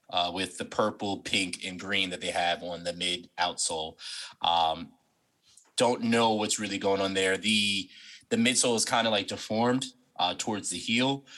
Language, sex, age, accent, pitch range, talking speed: Polish, male, 20-39, American, 95-125 Hz, 175 wpm